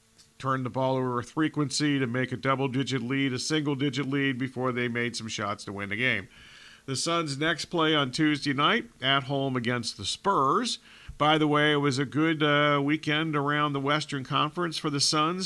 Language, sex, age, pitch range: English, male, 50-69, 130-155 Hz